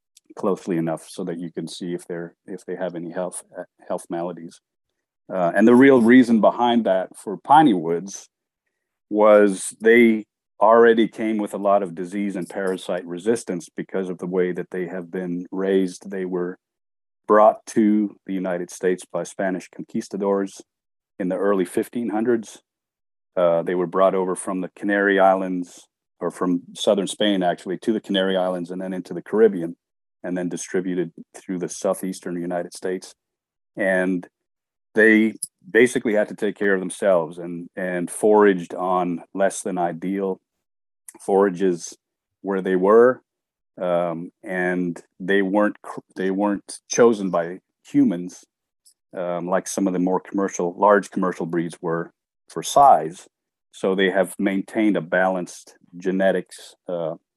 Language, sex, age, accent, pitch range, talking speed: English, male, 40-59, American, 90-100 Hz, 150 wpm